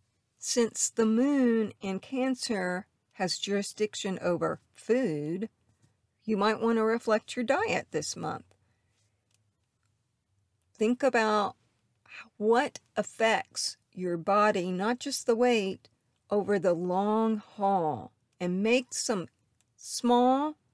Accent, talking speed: American, 105 wpm